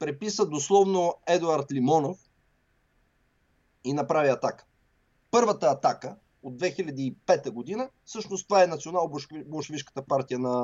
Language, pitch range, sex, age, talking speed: English, 145-220 Hz, male, 30-49, 105 wpm